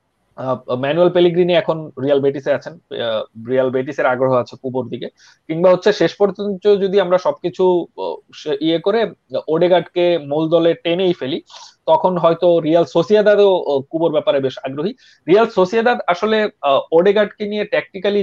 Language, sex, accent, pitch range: Bengali, male, native, 145-195 Hz